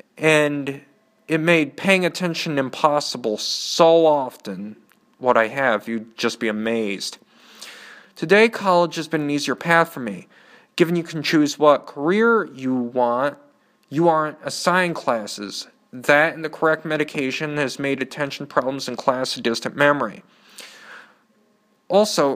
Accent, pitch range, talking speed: American, 135-175 Hz, 135 wpm